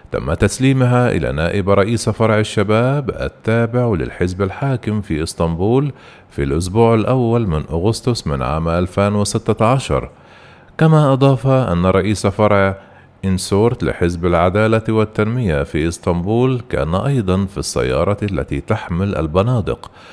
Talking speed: 115 wpm